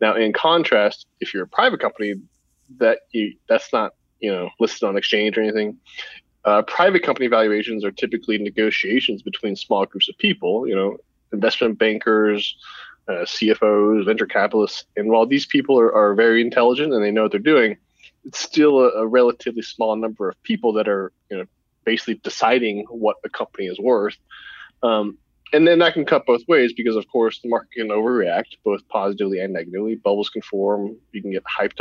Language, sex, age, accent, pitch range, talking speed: English, male, 20-39, American, 105-125 Hz, 185 wpm